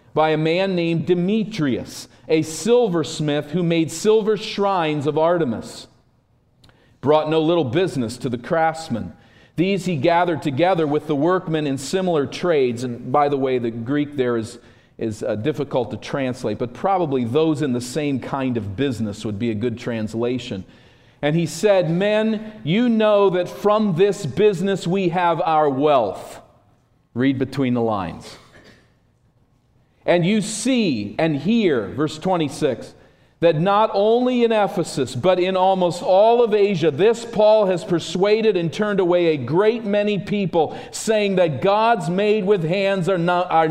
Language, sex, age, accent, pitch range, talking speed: English, male, 40-59, American, 130-195 Hz, 150 wpm